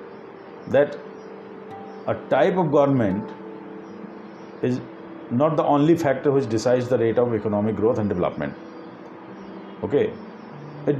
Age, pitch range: 50-69, 105-150 Hz